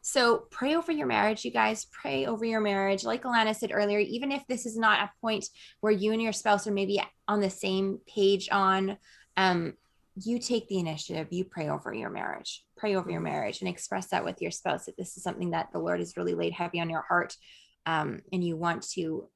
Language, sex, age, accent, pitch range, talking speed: English, female, 20-39, American, 170-205 Hz, 225 wpm